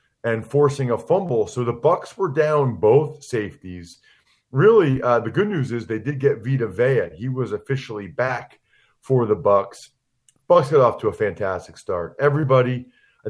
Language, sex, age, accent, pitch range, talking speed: English, male, 40-59, American, 110-135 Hz, 170 wpm